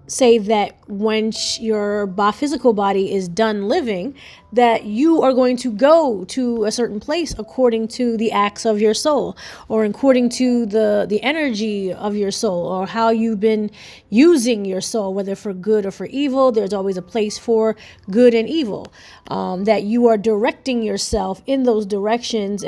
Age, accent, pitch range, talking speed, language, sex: 30-49, American, 200-240 Hz, 170 wpm, English, female